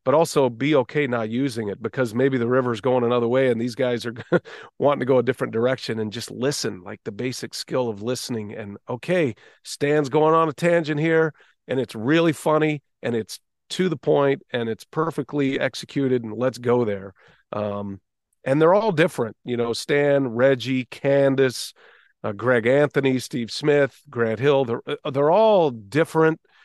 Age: 40-59